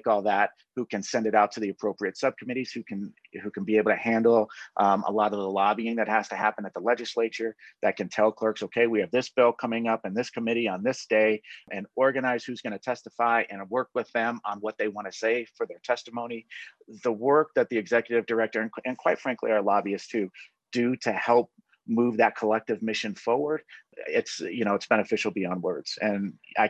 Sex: male